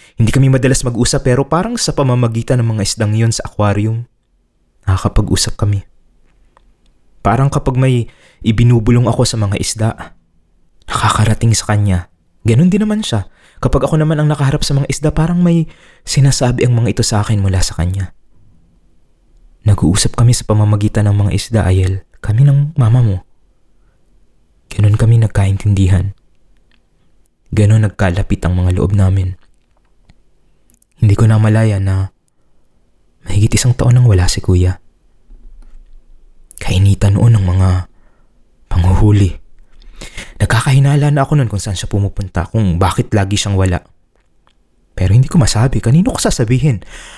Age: 20-39